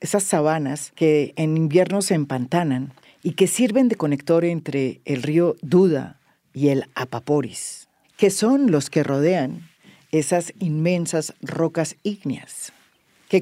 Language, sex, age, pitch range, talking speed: English, female, 50-69, 140-185 Hz, 130 wpm